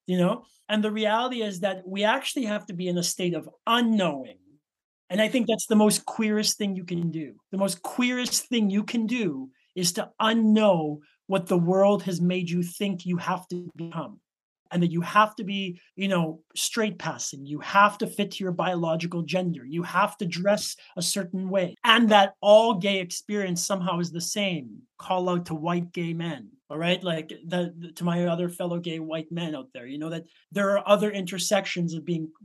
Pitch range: 175-205 Hz